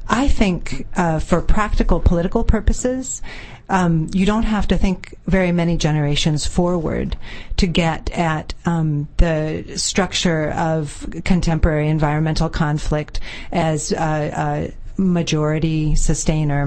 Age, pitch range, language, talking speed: 40-59, 150-180 Hz, English, 115 wpm